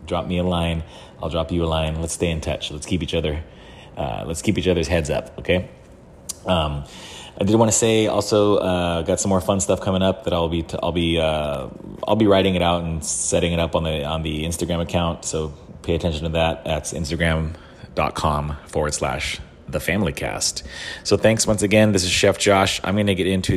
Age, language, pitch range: 30-49, English, 80-95 Hz